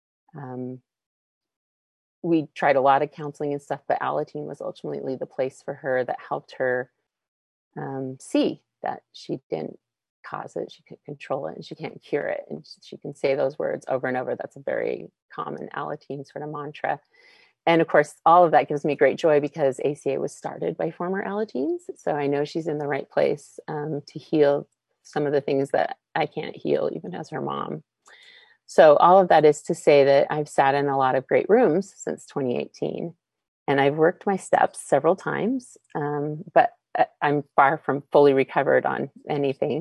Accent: American